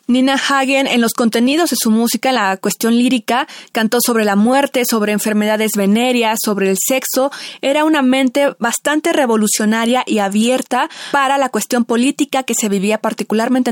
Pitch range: 220-265 Hz